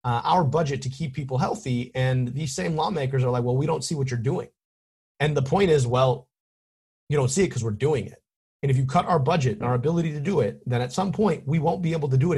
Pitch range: 120-155 Hz